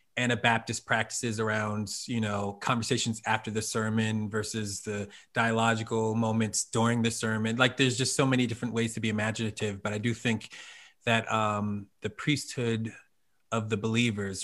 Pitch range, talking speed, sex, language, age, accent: 105-115 Hz, 155 wpm, male, English, 20-39, American